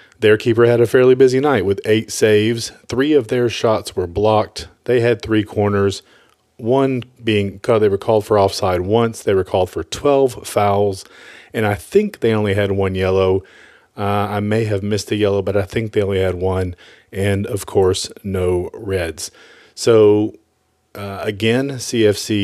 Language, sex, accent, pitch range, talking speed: English, male, American, 100-110 Hz, 175 wpm